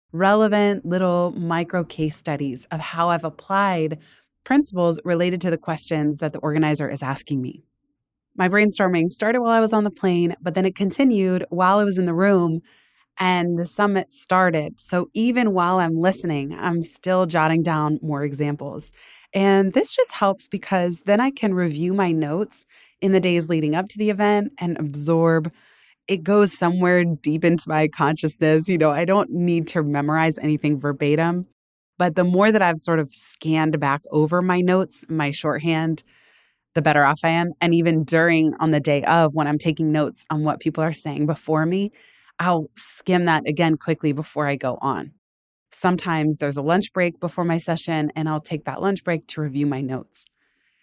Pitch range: 155-185 Hz